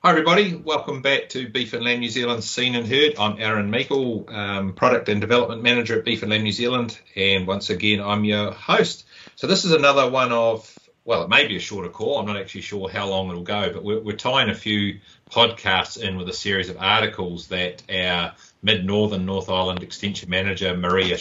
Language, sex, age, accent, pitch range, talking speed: English, male, 40-59, Australian, 90-110 Hz, 210 wpm